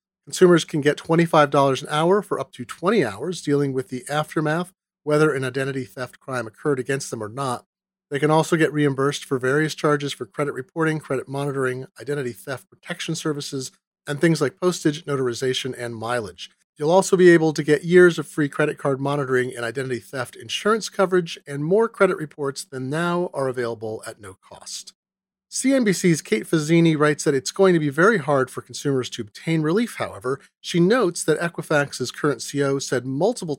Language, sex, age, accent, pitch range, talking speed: English, male, 40-59, American, 130-175 Hz, 180 wpm